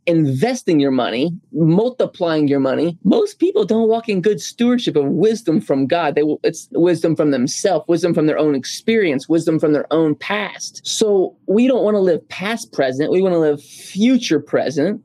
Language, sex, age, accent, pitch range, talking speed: English, male, 20-39, American, 150-205 Hz, 180 wpm